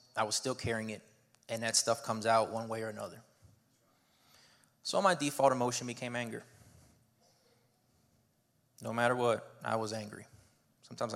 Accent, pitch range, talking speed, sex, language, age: American, 110-125 Hz, 145 wpm, male, English, 20-39